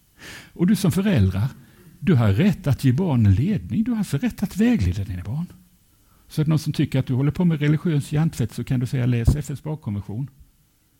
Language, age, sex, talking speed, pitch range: English, 60-79, male, 195 wpm, 115-150 Hz